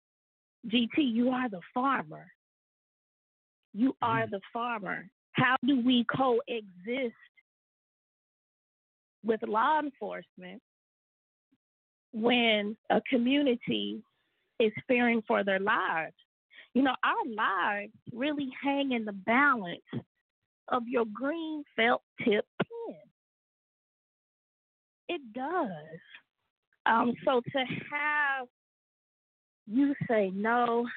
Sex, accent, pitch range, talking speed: female, American, 205-260 Hz, 95 wpm